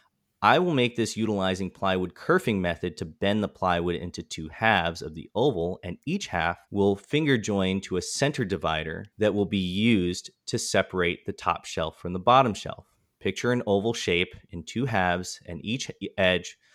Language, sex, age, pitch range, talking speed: English, male, 30-49, 90-115 Hz, 185 wpm